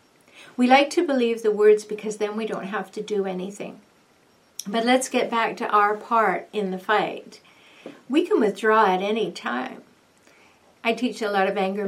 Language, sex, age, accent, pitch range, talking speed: English, female, 60-79, American, 200-270 Hz, 180 wpm